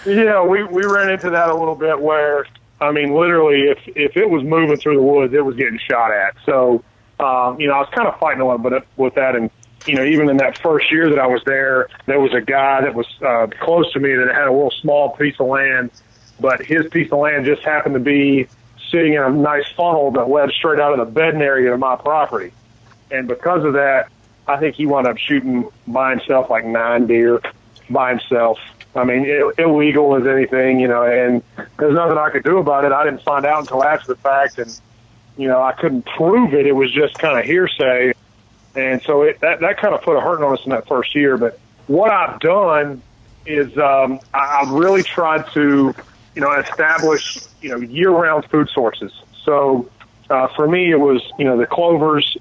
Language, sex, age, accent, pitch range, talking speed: English, male, 30-49, American, 120-150 Hz, 220 wpm